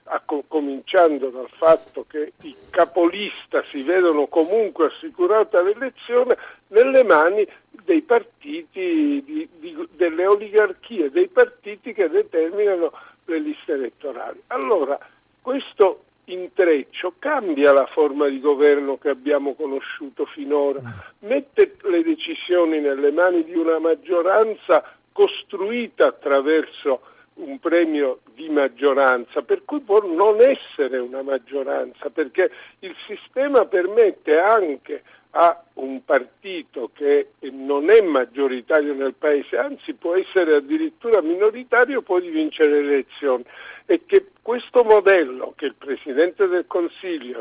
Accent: native